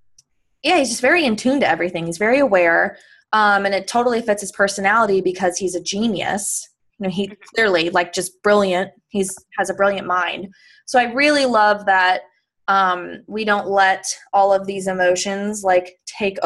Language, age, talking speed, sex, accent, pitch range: English, 20-39, 180 wpm, female, American, 190-235 Hz